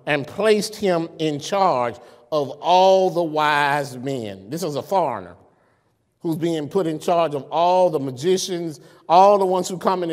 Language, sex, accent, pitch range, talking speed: English, male, American, 160-205 Hz, 170 wpm